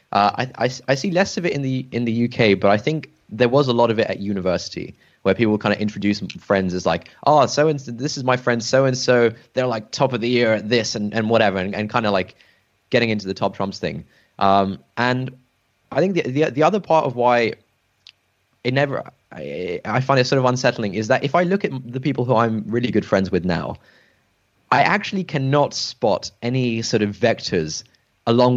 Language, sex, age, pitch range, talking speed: English, male, 20-39, 105-130 Hz, 230 wpm